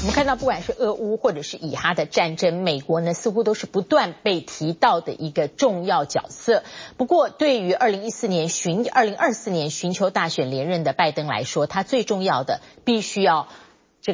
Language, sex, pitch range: Chinese, female, 170-250 Hz